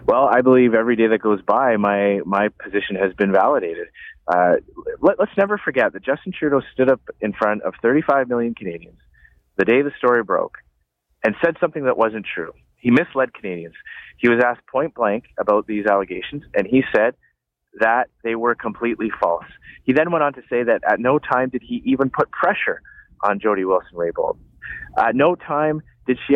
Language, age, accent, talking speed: English, 30-49, American, 190 wpm